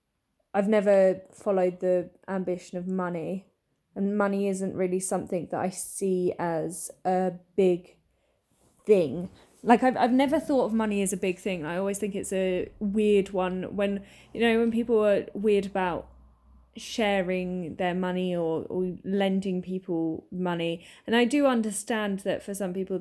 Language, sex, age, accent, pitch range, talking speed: English, female, 10-29, British, 180-205 Hz, 160 wpm